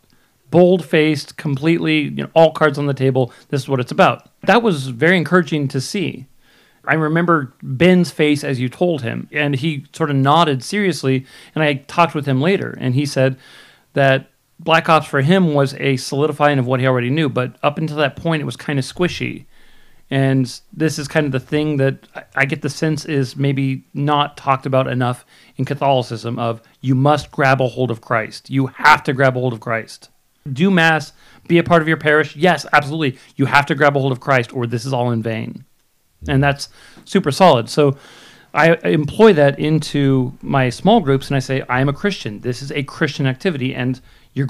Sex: male